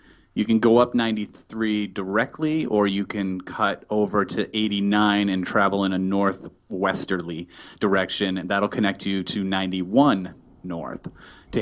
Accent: American